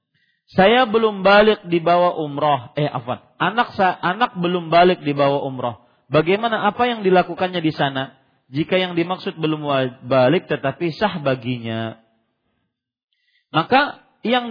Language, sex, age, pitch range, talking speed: Malay, male, 40-59, 140-220 Hz, 125 wpm